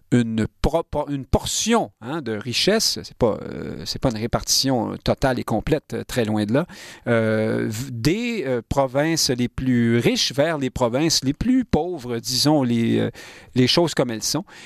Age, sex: 40-59, male